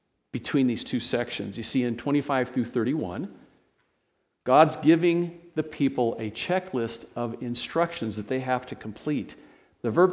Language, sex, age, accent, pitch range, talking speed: English, male, 50-69, American, 110-140 Hz, 150 wpm